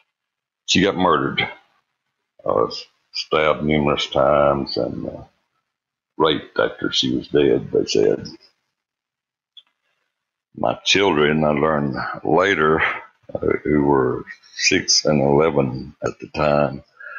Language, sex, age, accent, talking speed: English, male, 60-79, American, 110 wpm